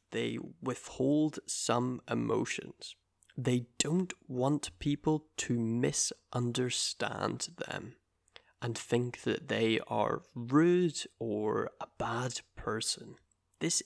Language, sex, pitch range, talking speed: English, male, 120-155 Hz, 95 wpm